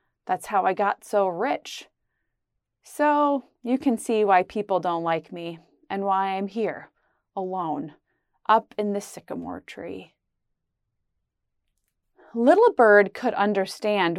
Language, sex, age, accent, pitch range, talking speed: English, female, 30-49, American, 200-310 Hz, 125 wpm